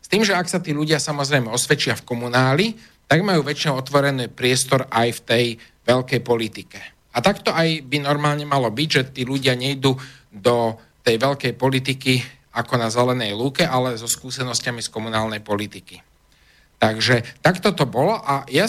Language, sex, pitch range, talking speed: Slovak, male, 120-155 Hz, 165 wpm